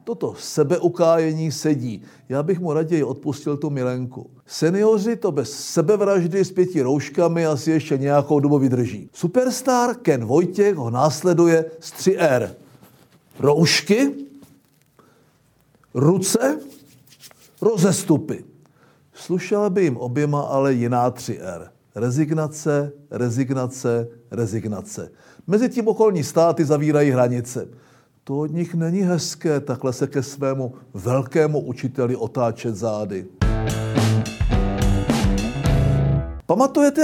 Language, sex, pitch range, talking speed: Czech, male, 130-175 Hz, 105 wpm